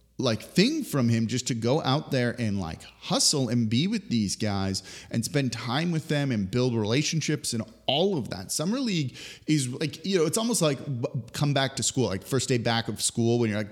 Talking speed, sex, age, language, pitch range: 225 wpm, male, 30-49, English, 110-140 Hz